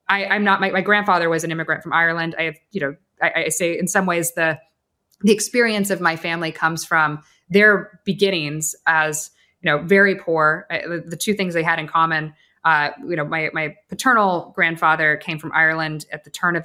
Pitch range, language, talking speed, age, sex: 155-195 Hz, English, 210 wpm, 20-39, female